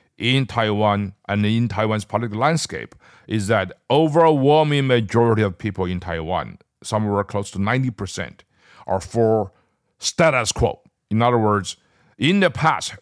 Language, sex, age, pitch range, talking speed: English, male, 50-69, 100-130 Hz, 140 wpm